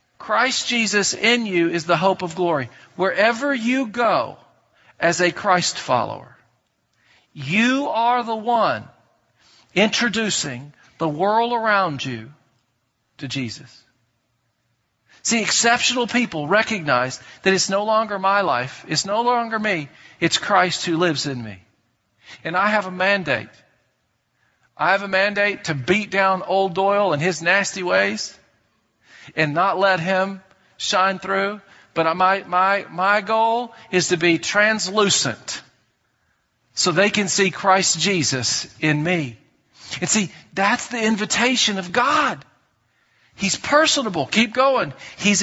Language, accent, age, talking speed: English, American, 50-69, 130 wpm